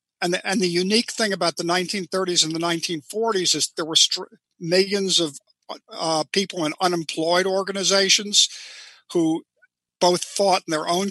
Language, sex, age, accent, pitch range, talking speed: English, male, 50-69, American, 160-190 Hz, 145 wpm